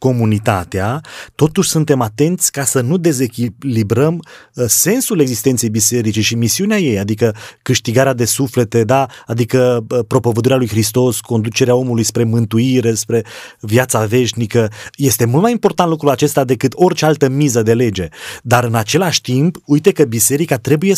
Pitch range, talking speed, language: 120-165 Hz, 145 wpm, Romanian